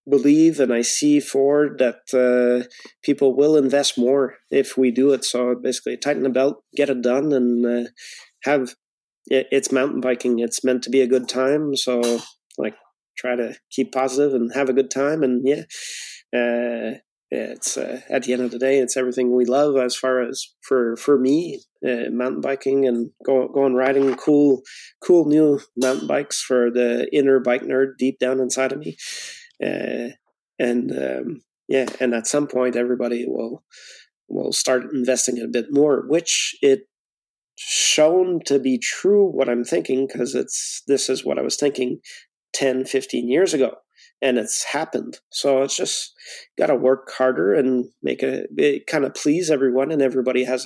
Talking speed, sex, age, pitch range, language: 175 wpm, male, 30-49, 125-140 Hz, English